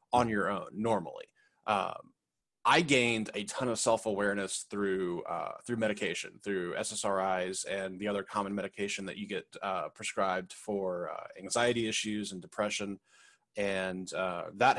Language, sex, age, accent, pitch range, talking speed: English, male, 20-39, American, 100-120 Hz, 145 wpm